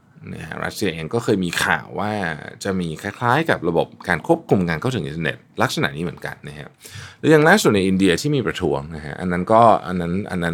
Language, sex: Thai, male